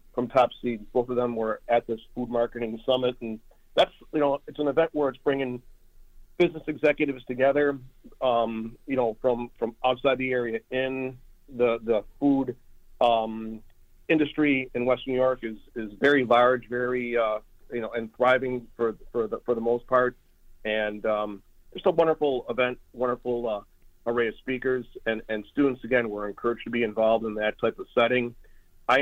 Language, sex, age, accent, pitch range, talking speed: English, male, 40-59, American, 115-130 Hz, 180 wpm